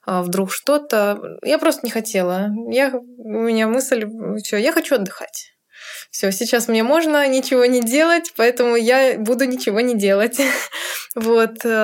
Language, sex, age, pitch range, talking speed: Russian, female, 20-39, 205-250 Hz, 140 wpm